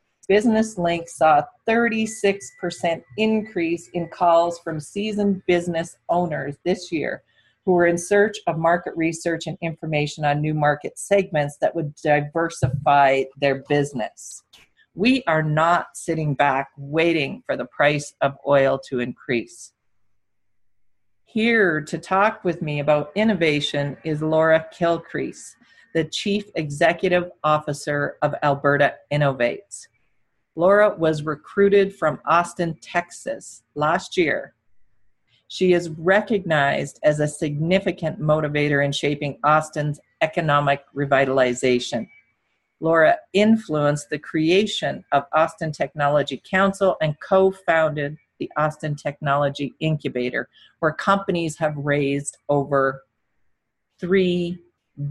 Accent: American